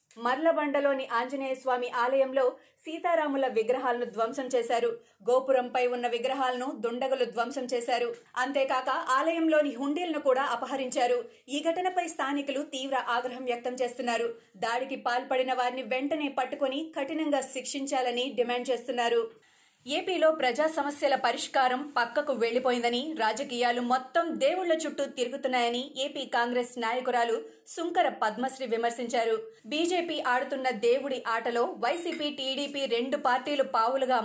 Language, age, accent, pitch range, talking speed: Telugu, 30-49, native, 240-285 Hz, 105 wpm